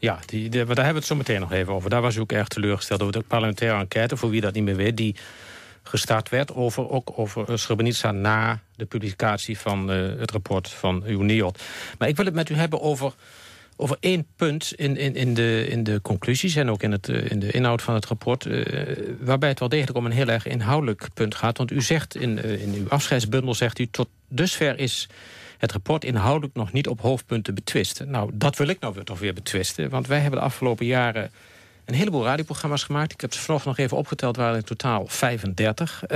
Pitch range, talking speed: 110-140 Hz, 225 wpm